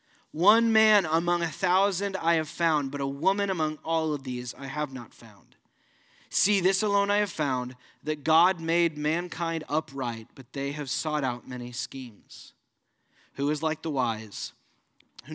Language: English